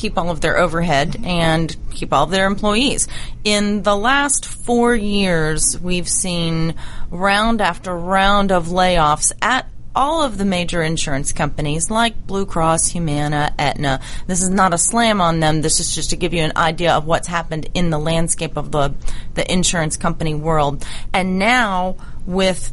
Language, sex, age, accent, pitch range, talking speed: English, female, 30-49, American, 155-195 Hz, 170 wpm